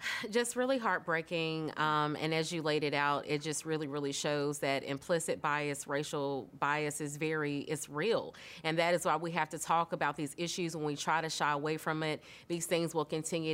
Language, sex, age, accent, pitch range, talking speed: English, female, 30-49, American, 155-175 Hz, 210 wpm